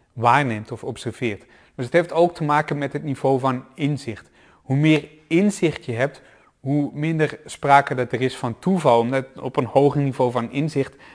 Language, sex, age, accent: Dutch, male, 30-49, Dutch